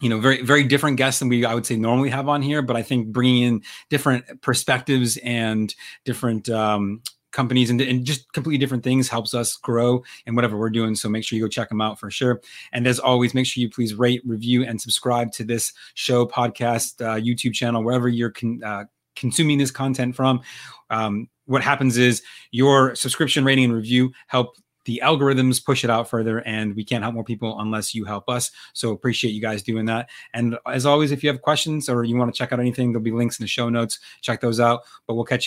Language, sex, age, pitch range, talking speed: English, male, 30-49, 110-125 Hz, 225 wpm